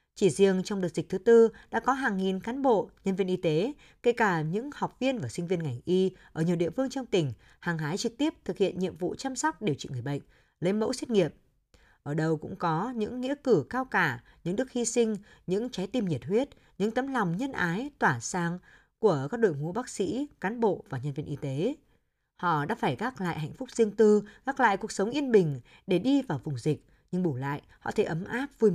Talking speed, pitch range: 240 wpm, 160-235 Hz